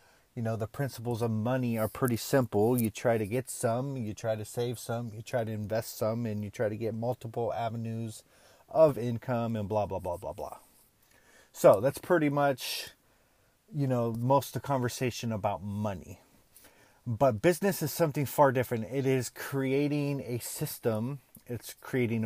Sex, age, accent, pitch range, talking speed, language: male, 30-49, American, 110-130 Hz, 175 wpm, English